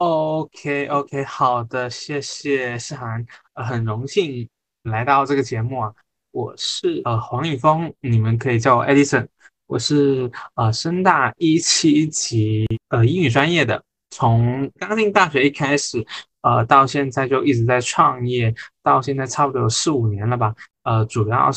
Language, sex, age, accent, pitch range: Chinese, male, 20-39, native, 115-140 Hz